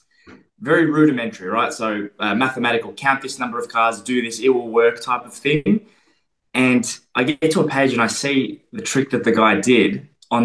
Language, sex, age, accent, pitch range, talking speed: English, male, 20-39, Australian, 110-135 Hz, 200 wpm